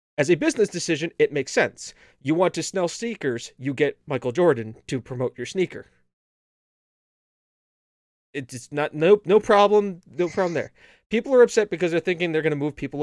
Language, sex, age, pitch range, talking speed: English, male, 30-49, 130-185 Hz, 185 wpm